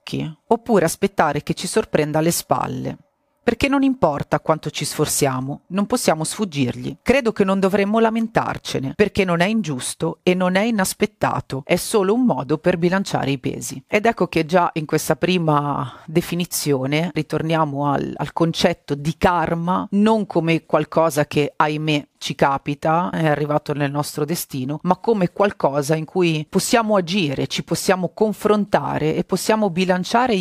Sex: female